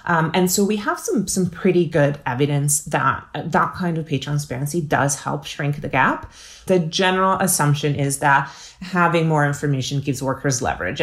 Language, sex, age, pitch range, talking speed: English, female, 30-49, 145-180 Hz, 175 wpm